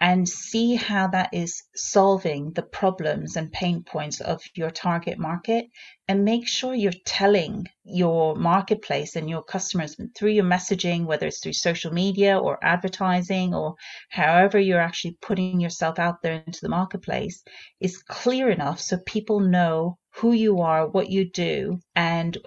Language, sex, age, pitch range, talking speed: English, female, 30-49, 175-210 Hz, 160 wpm